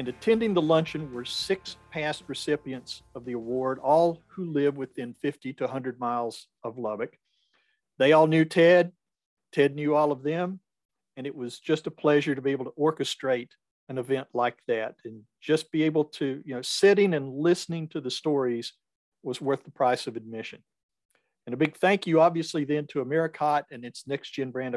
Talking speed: 185 wpm